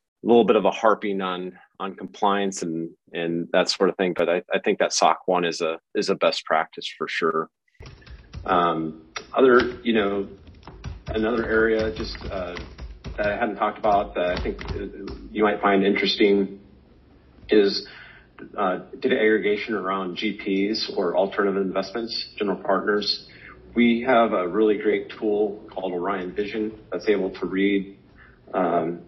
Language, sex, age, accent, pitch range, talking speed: English, male, 40-59, American, 90-105 Hz, 155 wpm